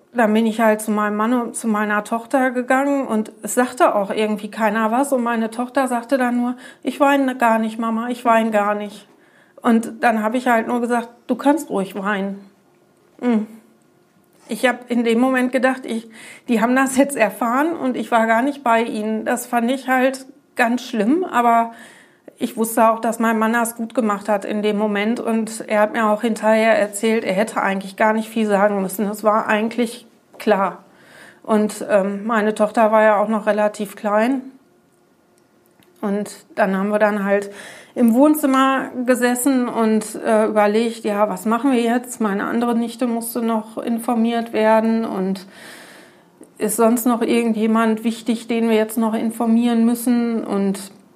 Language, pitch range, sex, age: German, 215-245 Hz, female, 40-59